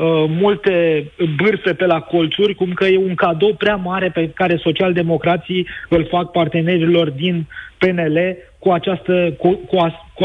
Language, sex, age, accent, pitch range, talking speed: Romanian, male, 30-49, native, 165-190 Hz, 130 wpm